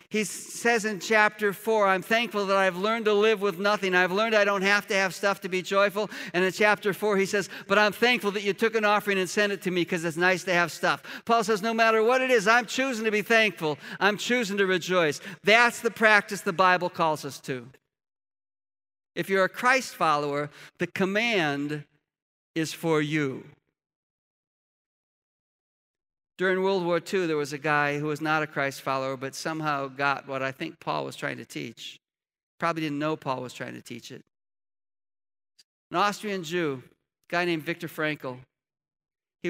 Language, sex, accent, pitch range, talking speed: English, male, American, 150-200 Hz, 195 wpm